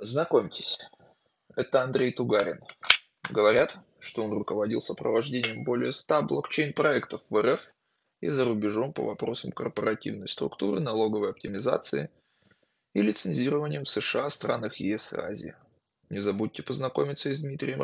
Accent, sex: native, male